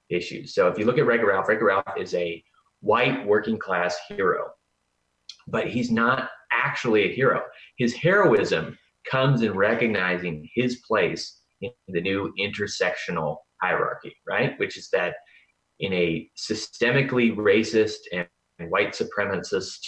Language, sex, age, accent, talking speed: English, male, 30-49, American, 135 wpm